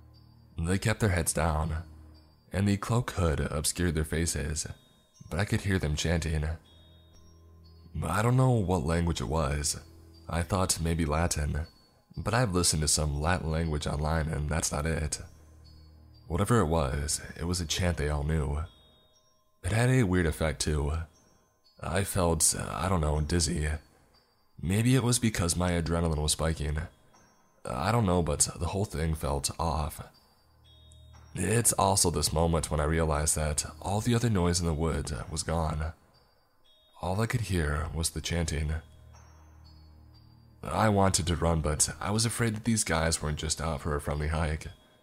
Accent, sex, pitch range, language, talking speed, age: American, male, 80-95 Hz, English, 165 wpm, 20-39